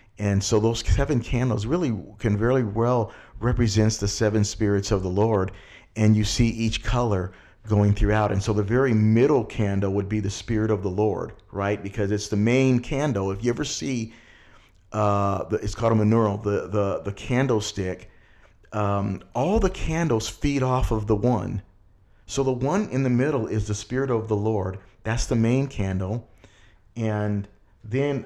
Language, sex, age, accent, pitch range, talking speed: English, male, 40-59, American, 100-115 Hz, 175 wpm